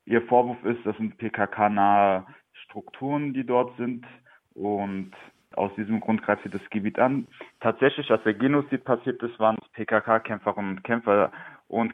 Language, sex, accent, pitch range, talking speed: German, male, German, 100-115 Hz, 150 wpm